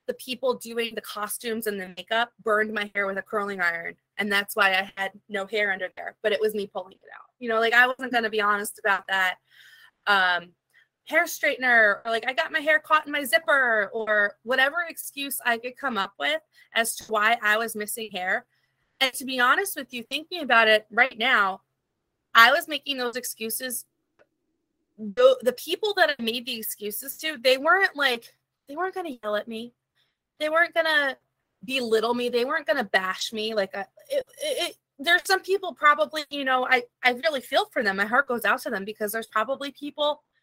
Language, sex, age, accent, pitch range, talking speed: English, female, 20-39, American, 210-280 Hz, 210 wpm